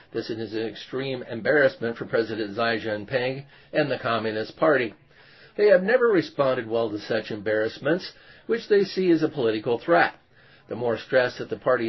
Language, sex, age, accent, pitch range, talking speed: English, male, 50-69, American, 115-140 Hz, 170 wpm